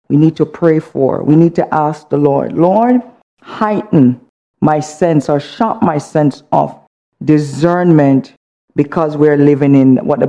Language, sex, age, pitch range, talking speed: English, female, 50-69, 160-200 Hz, 155 wpm